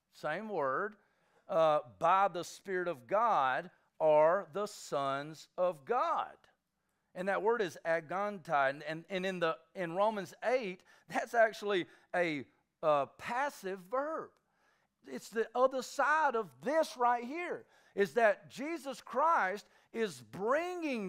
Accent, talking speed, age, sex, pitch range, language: American, 130 wpm, 50-69, male, 165-260 Hz, English